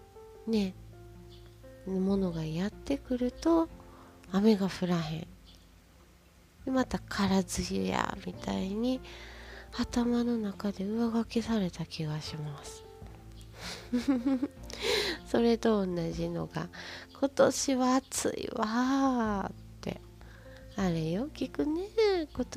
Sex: female